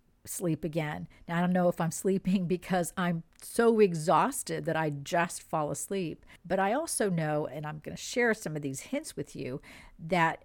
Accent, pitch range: American, 155-200 Hz